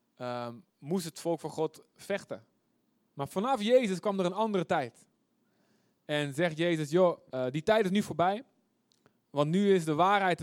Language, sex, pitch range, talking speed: Dutch, male, 140-190 Hz, 175 wpm